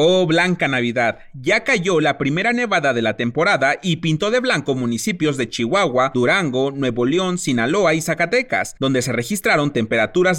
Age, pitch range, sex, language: 30-49, 130-190 Hz, male, Spanish